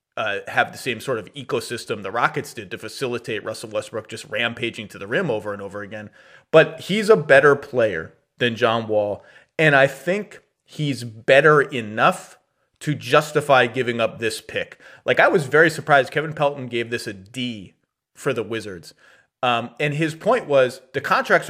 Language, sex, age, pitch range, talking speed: English, male, 30-49, 120-150 Hz, 180 wpm